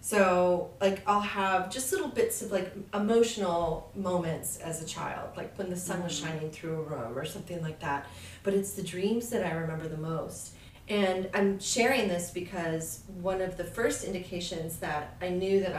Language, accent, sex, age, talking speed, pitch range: English, American, female, 30-49, 190 wpm, 150-190 Hz